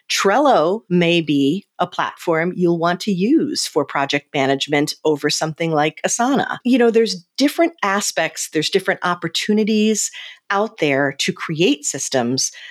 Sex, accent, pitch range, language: female, American, 165-220 Hz, English